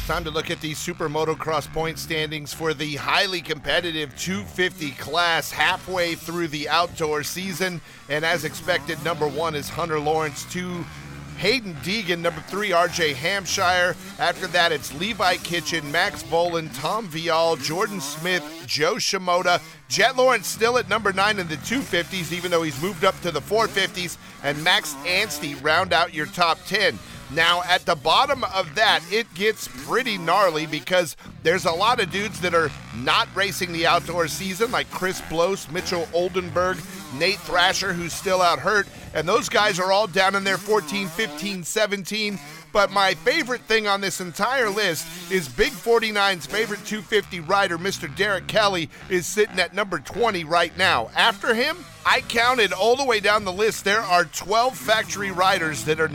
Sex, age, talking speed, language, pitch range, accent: male, 40-59, 170 wpm, English, 155-195 Hz, American